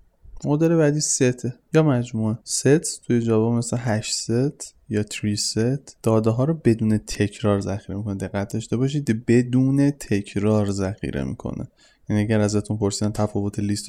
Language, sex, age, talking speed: Persian, male, 20-39, 145 wpm